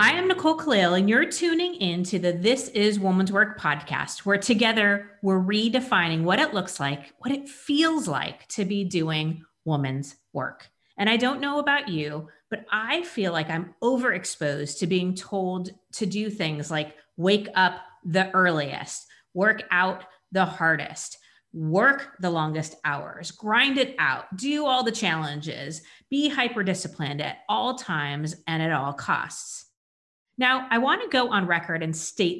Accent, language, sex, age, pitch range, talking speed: American, English, female, 30-49, 170-240 Hz, 160 wpm